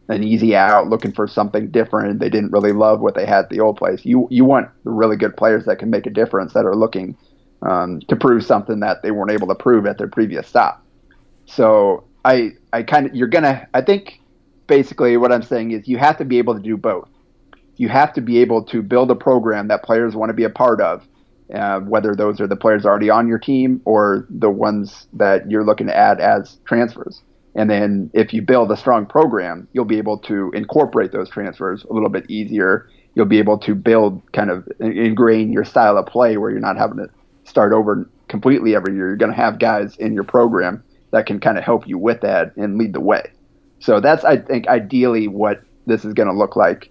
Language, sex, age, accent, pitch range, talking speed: English, male, 30-49, American, 105-120 Hz, 230 wpm